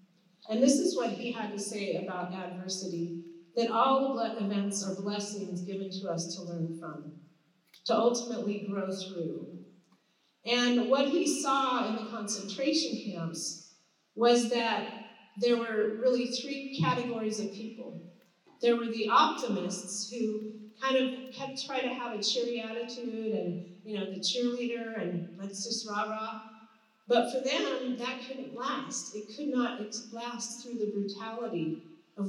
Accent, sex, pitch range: American, female, 195-240 Hz